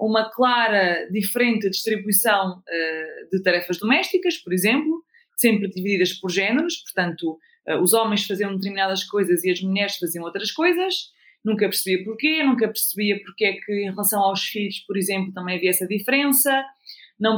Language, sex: Portuguese, female